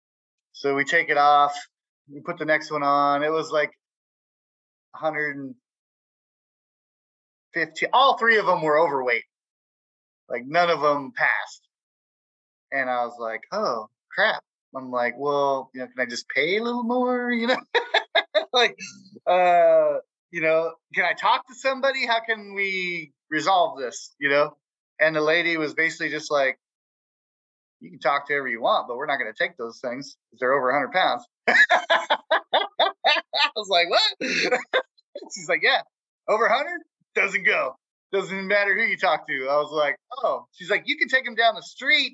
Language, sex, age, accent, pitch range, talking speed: English, male, 20-39, American, 145-235 Hz, 170 wpm